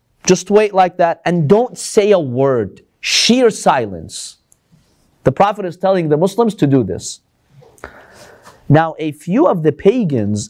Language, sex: English, male